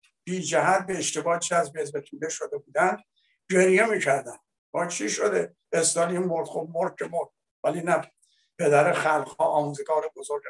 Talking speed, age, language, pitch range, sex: 135 wpm, 60-79, Persian, 145-180 Hz, male